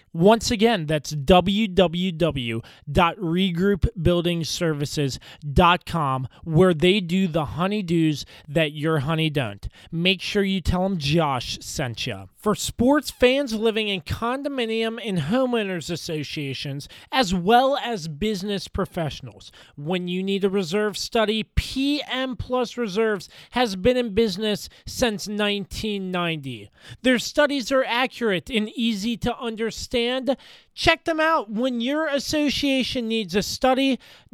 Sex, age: male, 30-49